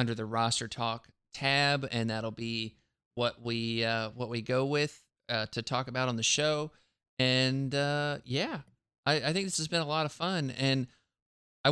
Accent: American